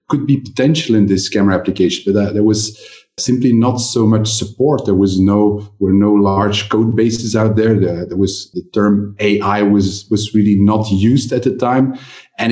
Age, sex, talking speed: 40-59, male, 195 wpm